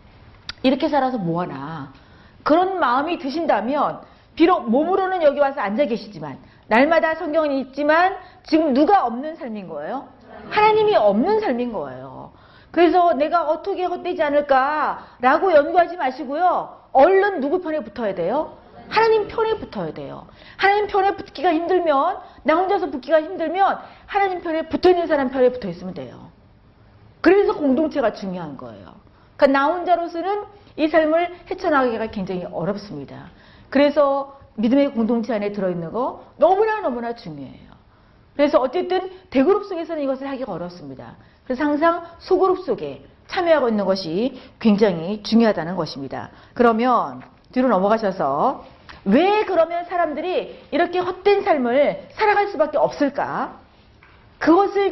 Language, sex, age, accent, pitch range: Korean, female, 40-59, native, 235-355 Hz